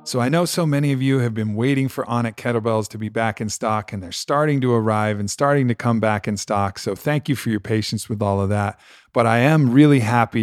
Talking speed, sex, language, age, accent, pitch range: 260 wpm, male, English, 40-59, American, 110-140 Hz